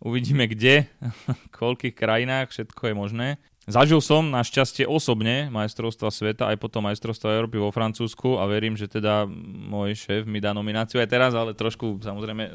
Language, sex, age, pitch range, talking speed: Slovak, male, 20-39, 105-125 Hz, 165 wpm